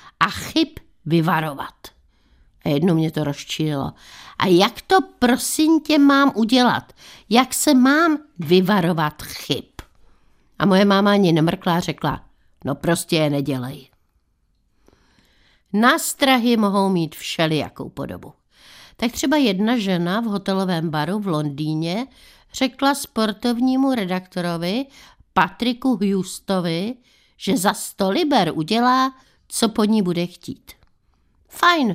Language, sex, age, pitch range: Czech, female, 60-79, 155-240 Hz